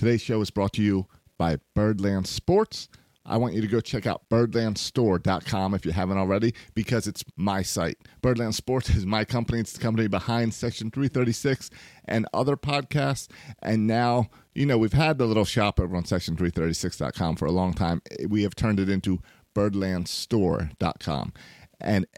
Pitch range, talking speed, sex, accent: 100-125 Hz, 170 wpm, male, American